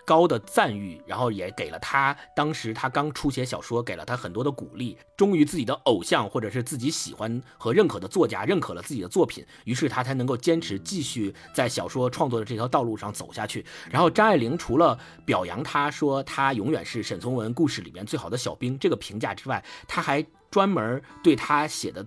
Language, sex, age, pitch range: Chinese, male, 50-69, 115-155 Hz